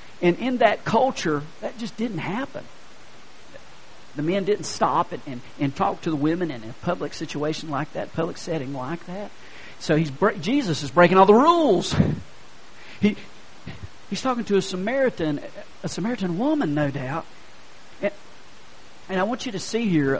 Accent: American